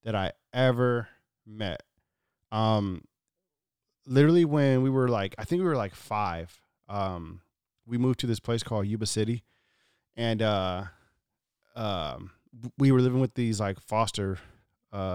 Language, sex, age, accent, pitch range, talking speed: English, male, 30-49, American, 100-130 Hz, 145 wpm